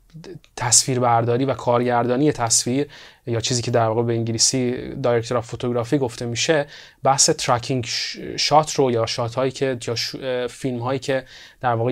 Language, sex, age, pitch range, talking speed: Persian, male, 30-49, 120-140 Hz, 155 wpm